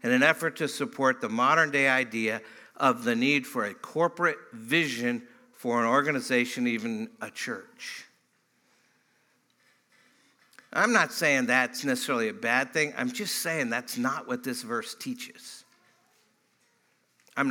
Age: 60-79